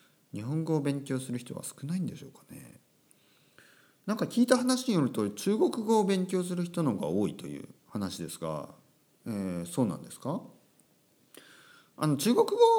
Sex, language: male, Japanese